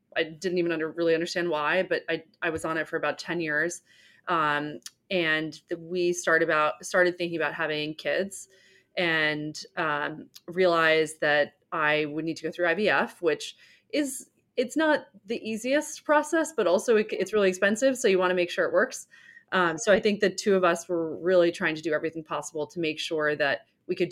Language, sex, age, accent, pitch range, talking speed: English, female, 30-49, American, 160-190 Hz, 200 wpm